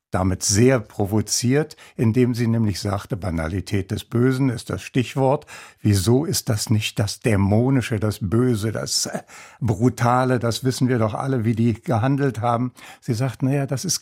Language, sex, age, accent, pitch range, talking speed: German, male, 60-79, German, 110-135 Hz, 160 wpm